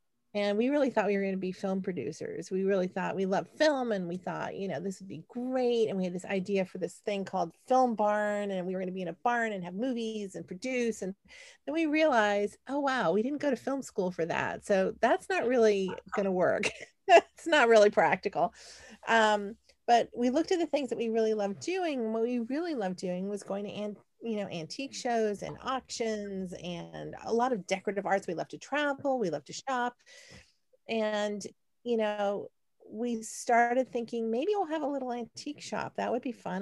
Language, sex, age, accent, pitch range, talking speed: English, female, 40-59, American, 185-240 Hz, 220 wpm